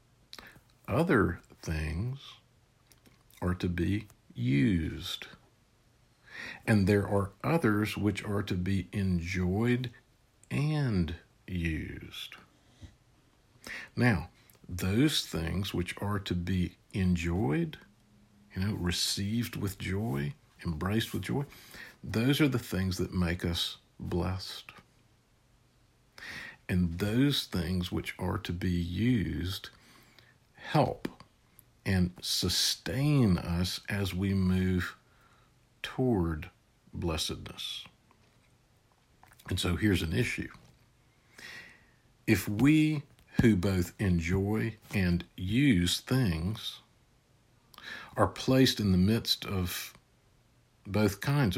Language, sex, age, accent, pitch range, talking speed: English, male, 60-79, American, 90-120 Hz, 90 wpm